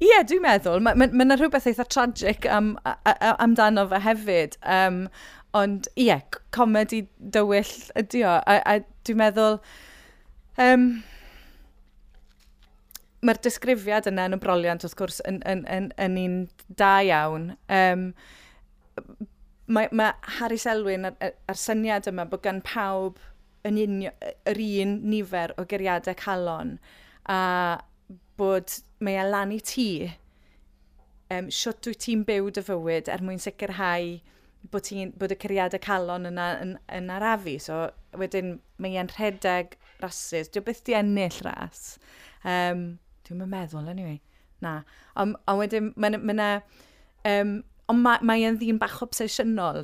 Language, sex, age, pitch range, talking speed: English, female, 30-49, 185-220 Hz, 115 wpm